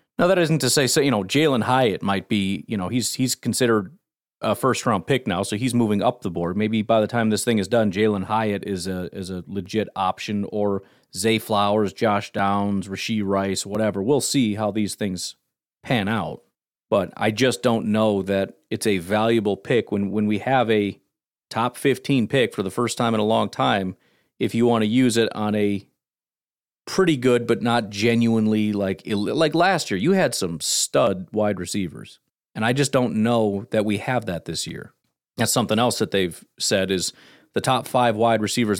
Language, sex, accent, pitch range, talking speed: English, male, American, 100-120 Hz, 205 wpm